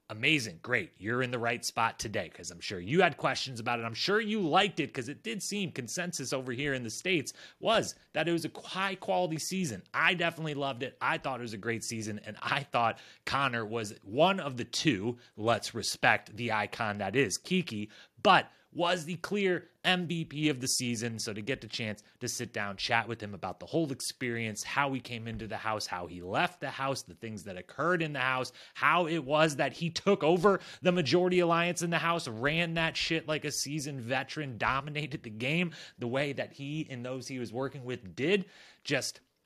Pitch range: 115-165 Hz